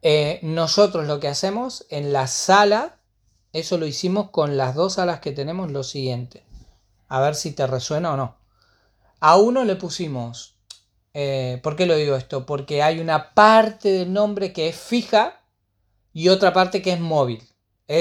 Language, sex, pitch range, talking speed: Spanish, male, 130-175 Hz, 175 wpm